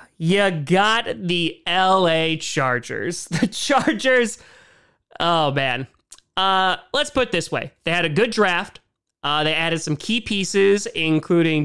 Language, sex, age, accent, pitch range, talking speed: English, male, 30-49, American, 155-205 Hz, 140 wpm